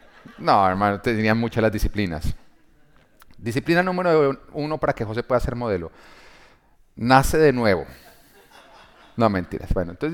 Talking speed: 135 wpm